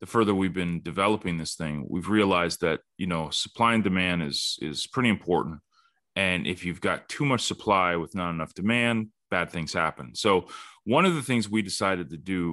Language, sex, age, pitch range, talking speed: English, male, 30-49, 85-105 Hz, 200 wpm